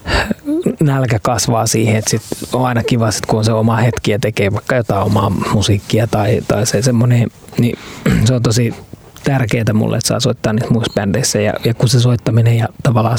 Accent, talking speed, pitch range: native, 185 wpm, 110-125 Hz